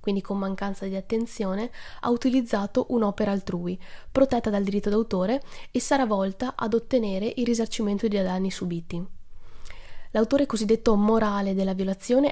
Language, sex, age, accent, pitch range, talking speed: Italian, female, 20-39, native, 195-235 Hz, 135 wpm